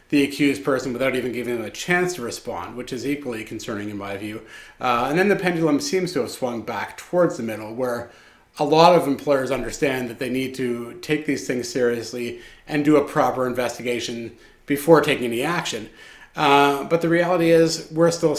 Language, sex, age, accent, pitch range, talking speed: English, male, 30-49, American, 125-150 Hz, 200 wpm